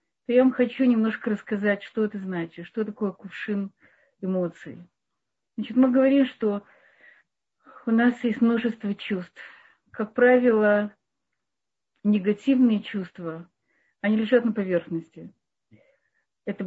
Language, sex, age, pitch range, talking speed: Russian, female, 40-59, 195-240 Hz, 110 wpm